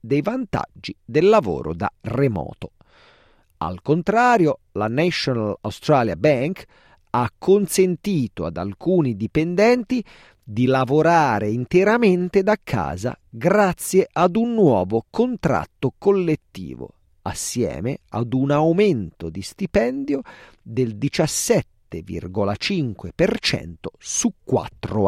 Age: 40-59